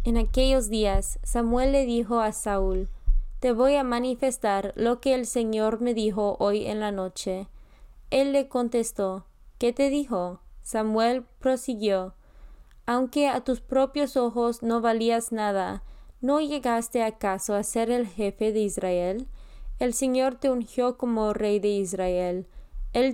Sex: female